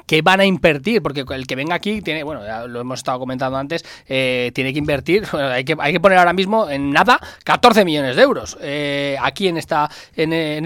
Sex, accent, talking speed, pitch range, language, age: male, Spanish, 230 wpm, 130-170 Hz, Spanish, 20-39